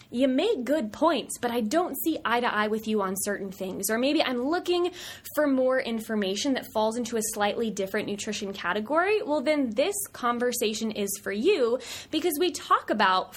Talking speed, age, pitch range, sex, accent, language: 190 wpm, 20-39, 205-295 Hz, female, American, English